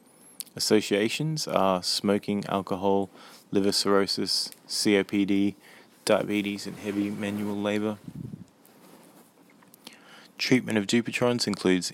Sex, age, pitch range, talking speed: male, 20-39, 95-110 Hz, 80 wpm